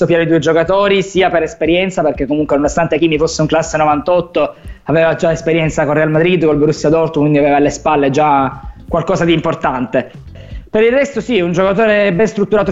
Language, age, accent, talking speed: Italian, 20-39, native, 195 wpm